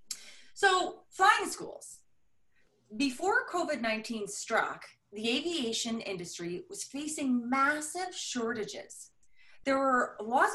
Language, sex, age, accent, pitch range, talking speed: English, female, 30-49, American, 190-255 Hz, 90 wpm